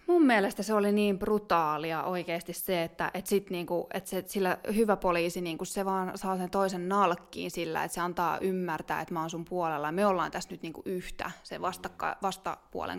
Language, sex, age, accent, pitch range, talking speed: Finnish, female, 20-39, native, 175-200 Hz, 190 wpm